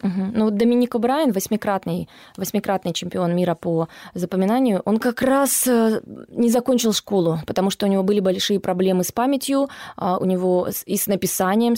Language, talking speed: Russian, 160 wpm